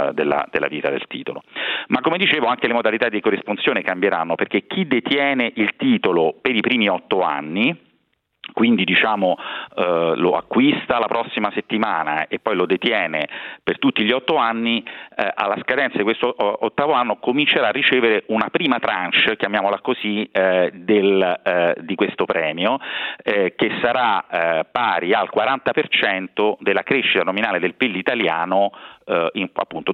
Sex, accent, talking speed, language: male, native, 150 wpm, Italian